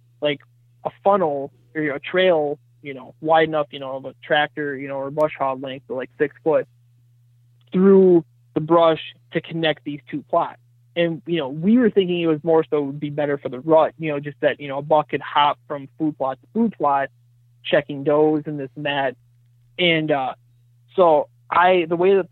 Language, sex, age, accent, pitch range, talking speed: English, male, 20-39, American, 125-160 Hz, 220 wpm